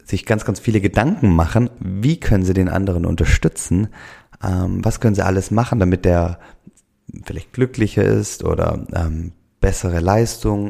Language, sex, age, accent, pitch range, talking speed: German, male, 30-49, German, 90-110 Hz, 150 wpm